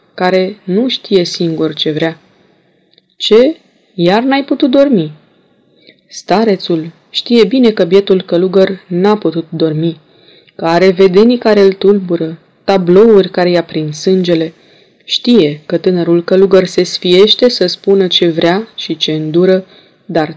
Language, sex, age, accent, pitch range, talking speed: Romanian, female, 20-39, native, 170-205 Hz, 135 wpm